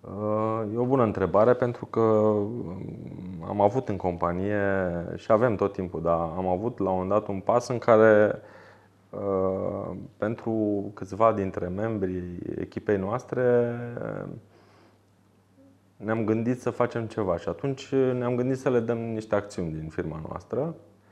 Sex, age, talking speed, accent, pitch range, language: male, 30-49, 135 wpm, native, 95-120 Hz, Romanian